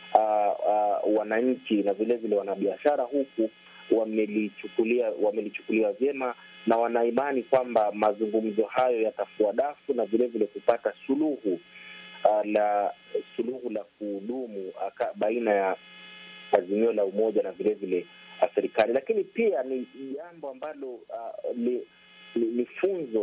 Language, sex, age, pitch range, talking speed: Swahili, male, 30-49, 105-130 Hz, 120 wpm